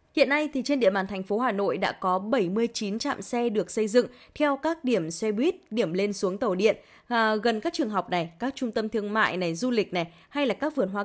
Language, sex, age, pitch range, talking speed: Vietnamese, female, 20-39, 195-265 Hz, 255 wpm